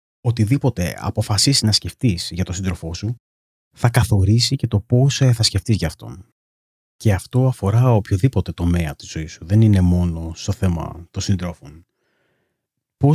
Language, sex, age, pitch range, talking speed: Greek, male, 30-49, 90-115 Hz, 150 wpm